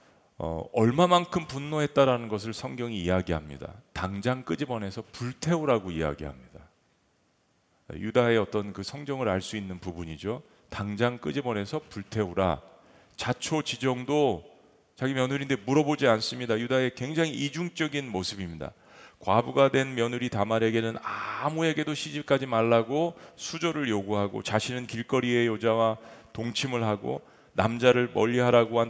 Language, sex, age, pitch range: Korean, male, 40-59, 105-140 Hz